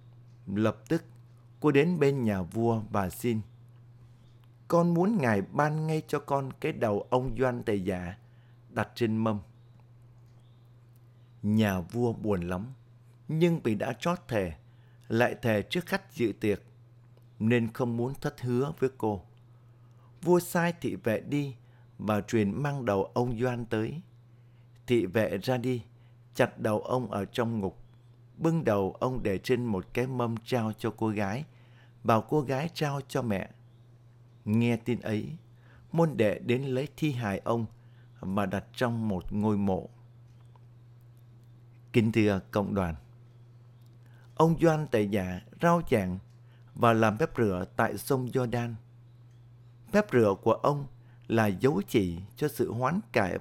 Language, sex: Vietnamese, male